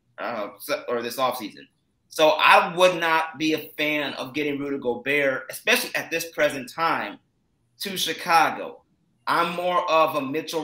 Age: 30-49